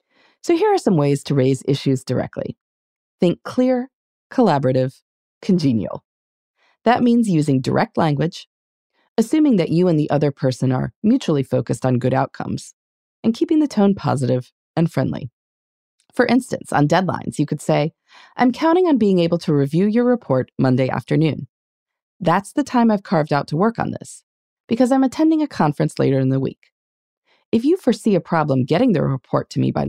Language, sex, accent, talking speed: English, female, American, 175 wpm